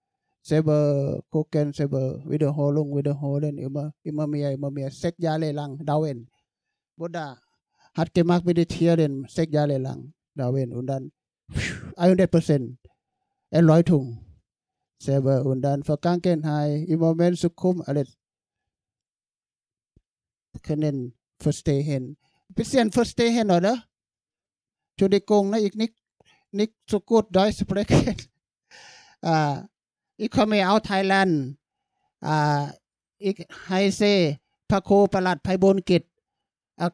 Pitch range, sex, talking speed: 145-195 Hz, male, 125 wpm